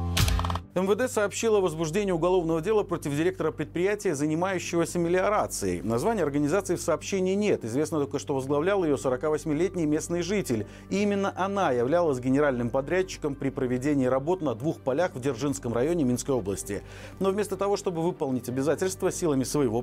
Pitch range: 135-190 Hz